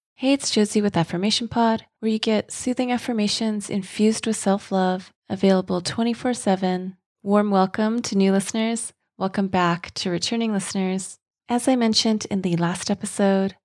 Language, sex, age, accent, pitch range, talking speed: English, female, 20-39, American, 175-210 Hz, 155 wpm